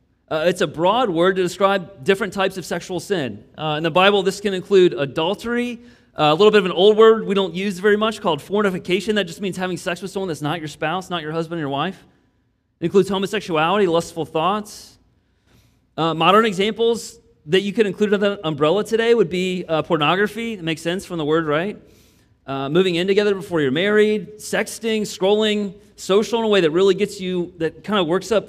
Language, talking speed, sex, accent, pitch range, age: English, 215 wpm, male, American, 160-205 Hz, 30-49